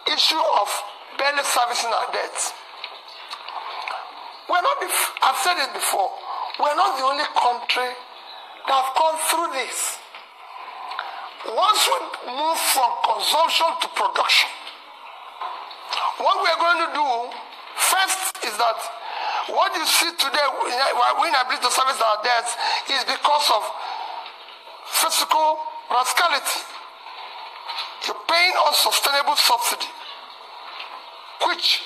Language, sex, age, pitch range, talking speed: English, male, 50-69, 250-345 Hz, 105 wpm